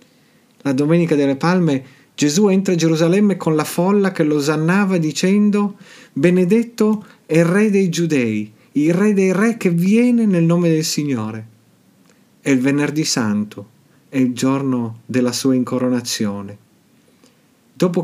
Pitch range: 130-175 Hz